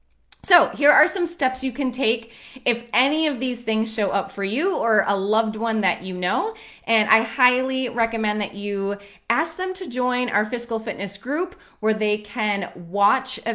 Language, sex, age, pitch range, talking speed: English, female, 30-49, 195-260 Hz, 190 wpm